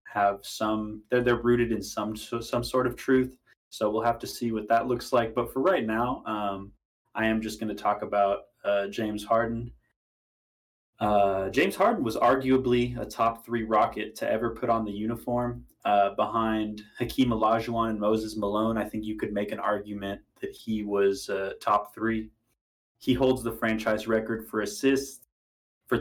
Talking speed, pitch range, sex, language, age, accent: 180 wpm, 105-120 Hz, male, English, 20-39, American